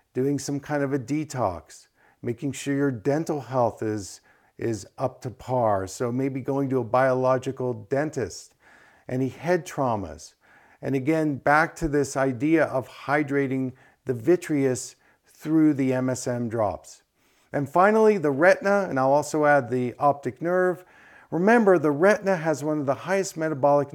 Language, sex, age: English, male, 50-69